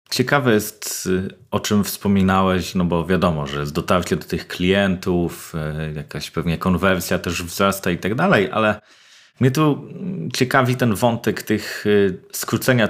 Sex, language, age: male, Polish, 30-49